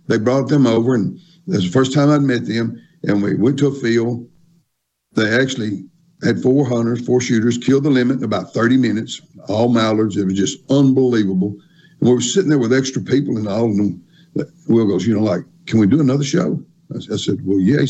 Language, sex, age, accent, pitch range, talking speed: English, male, 60-79, American, 110-155 Hz, 220 wpm